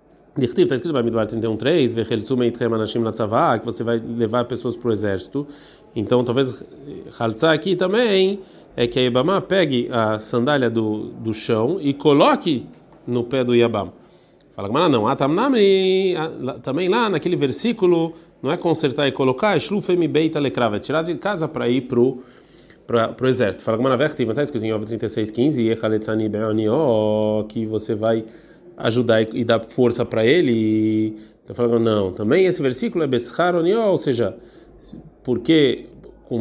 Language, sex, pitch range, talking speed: Portuguese, male, 110-145 Hz, 165 wpm